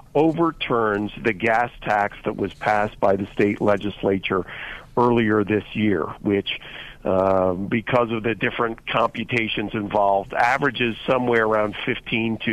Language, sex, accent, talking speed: English, male, American, 130 wpm